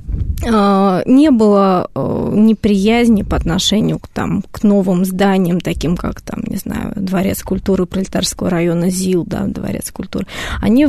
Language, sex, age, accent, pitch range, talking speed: Russian, female, 20-39, native, 190-235 Hz, 125 wpm